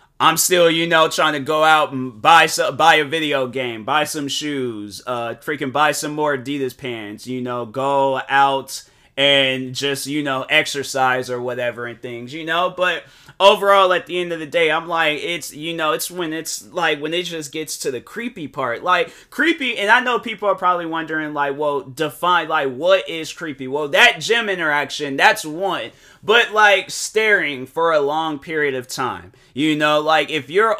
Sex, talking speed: male, 195 wpm